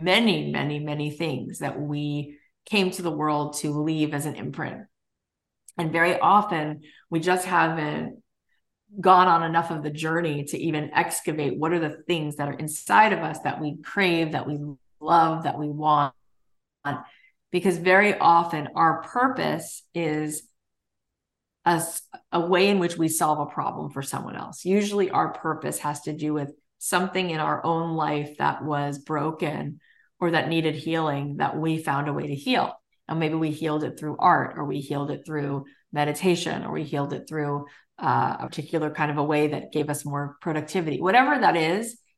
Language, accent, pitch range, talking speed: English, American, 150-170 Hz, 180 wpm